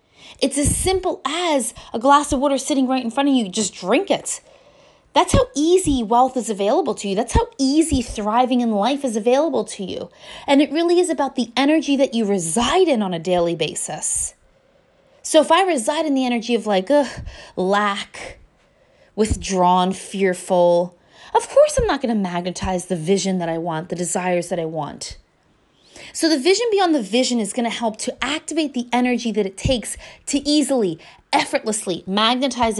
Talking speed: 185 wpm